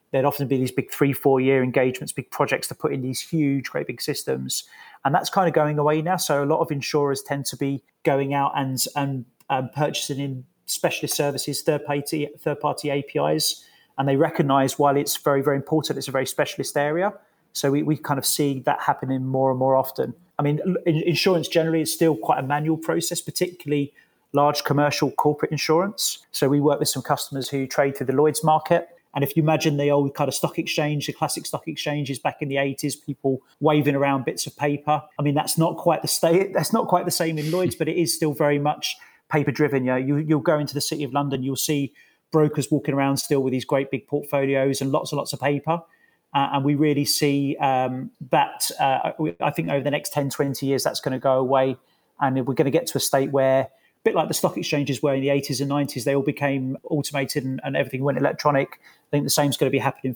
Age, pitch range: 30-49, 135-155 Hz